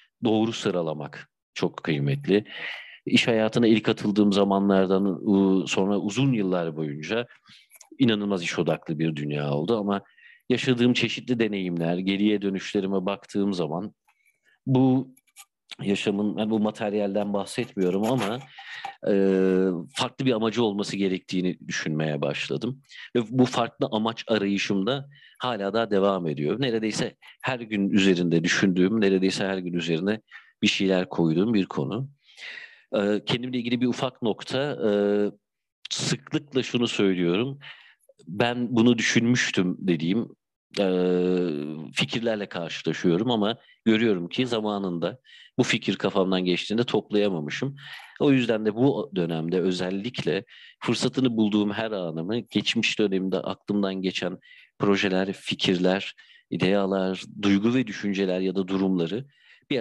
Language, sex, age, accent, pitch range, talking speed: Turkish, male, 50-69, native, 95-115 Hz, 115 wpm